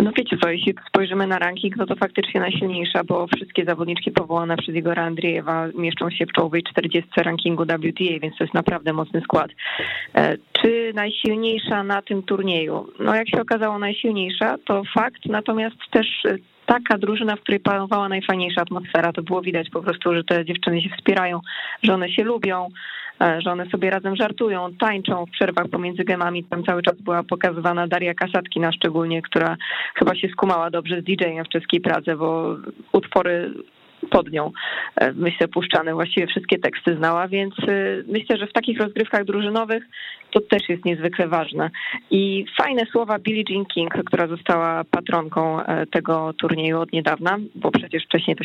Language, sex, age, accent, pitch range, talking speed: Polish, female, 20-39, native, 170-200 Hz, 165 wpm